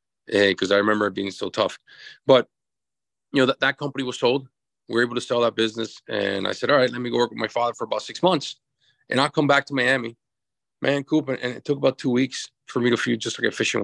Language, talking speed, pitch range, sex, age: English, 270 wpm, 120-140 Hz, male, 40-59